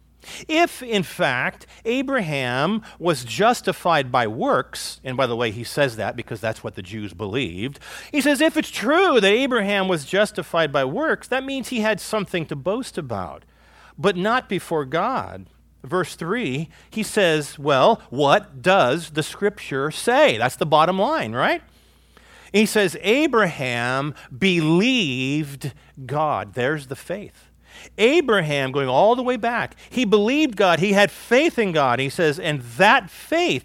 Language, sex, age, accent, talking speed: English, male, 40-59, American, 155 wpm